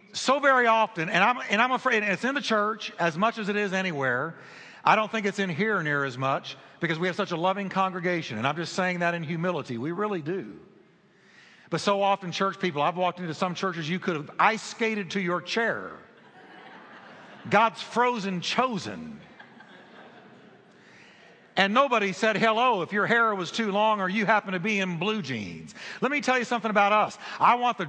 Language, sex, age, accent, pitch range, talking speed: English, male, 50-69, American, 190-230 Hz, 200 wpm